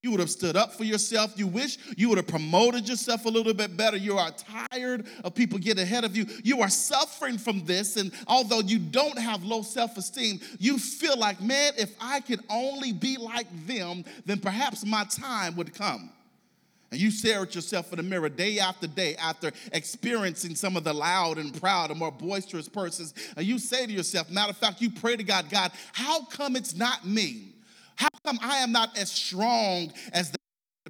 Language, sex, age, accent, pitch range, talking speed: English, male, 40-59, American, 185-245 Hz, 205 wpm